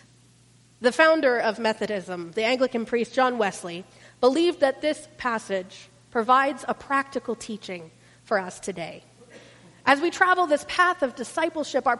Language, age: English, 40-59